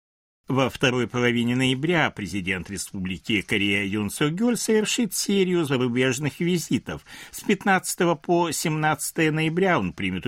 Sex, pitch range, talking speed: male, 95-165 Hz, 110 wpm